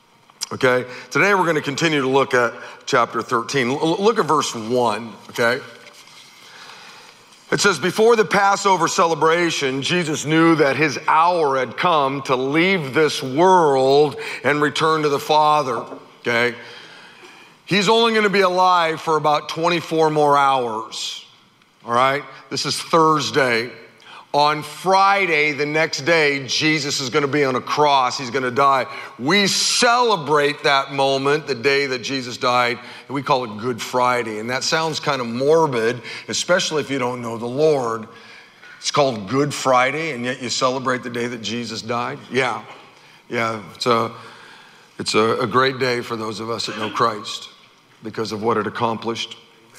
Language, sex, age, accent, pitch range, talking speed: English, male, 40-59, American, 120-155 Hz, 160 wpm